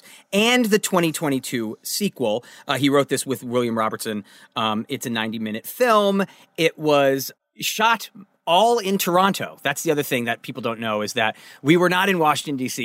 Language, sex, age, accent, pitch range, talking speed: English, male, 30-49, American, 115-170 Hz, 180 wpm